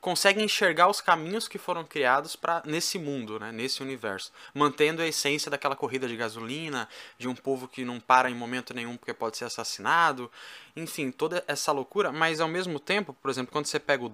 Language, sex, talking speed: Portuguese, male, 195 wpm